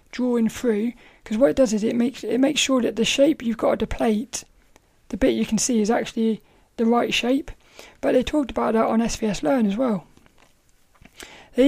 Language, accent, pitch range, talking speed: English, British, 225-265 Hz, 205 wpm